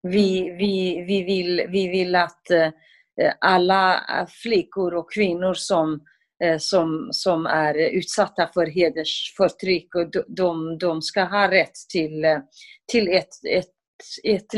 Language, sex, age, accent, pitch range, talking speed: Swedish, female, 30-49, native, 175-215 Hz, 105 wpm